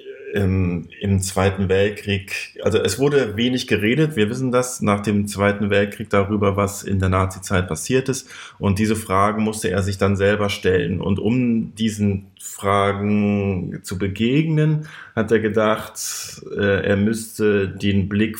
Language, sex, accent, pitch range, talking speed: German, male, German, 95-110 Hz, 145 wpm